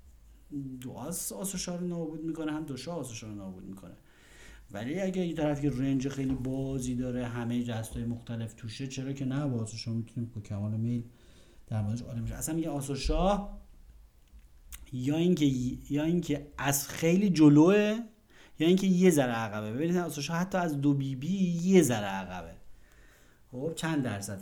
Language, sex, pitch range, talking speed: Persian, male, 115-155 Hz, 150 wpm